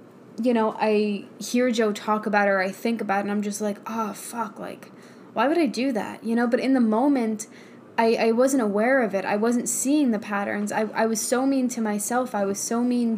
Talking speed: 235 wpm